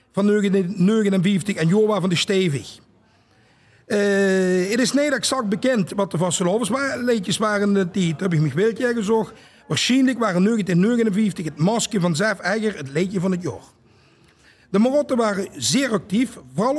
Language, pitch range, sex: Dutch, 165-220 Hz, male